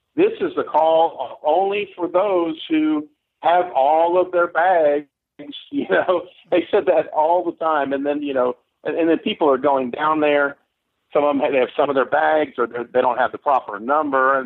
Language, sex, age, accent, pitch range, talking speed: English, male, 50-69, American, 125-175 Hz, 210 wpm